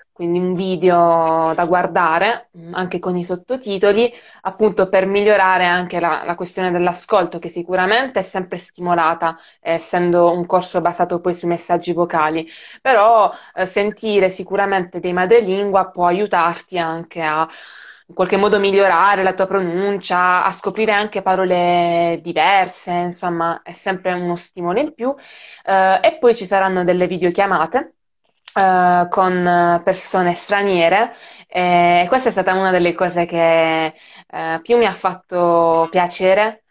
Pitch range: 170-195 Hz